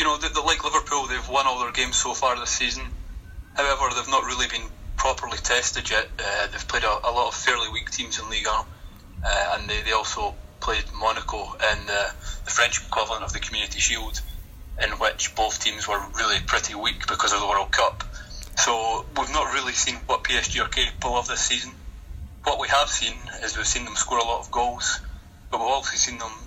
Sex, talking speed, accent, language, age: male, 215 wpm, British, English, 20-39